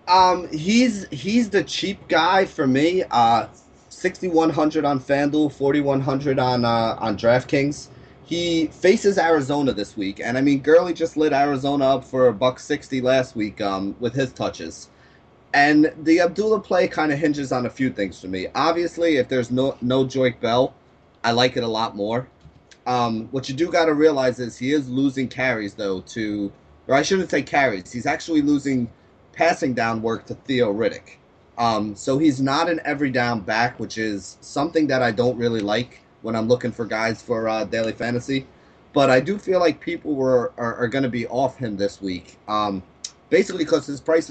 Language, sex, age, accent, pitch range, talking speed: English, male, 30-49, American, 115-155 Hz, 190 wpm